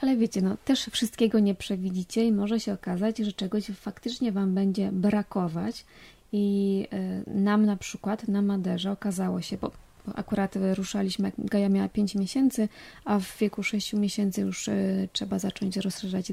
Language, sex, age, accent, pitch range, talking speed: Polish, female, 20-39, native, 195-220 Hz, 145 wpm